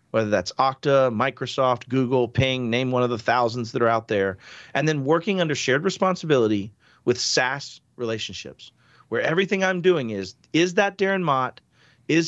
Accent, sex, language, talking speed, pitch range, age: American, male, English, 165 wpm, 120-165 Hz, 40-59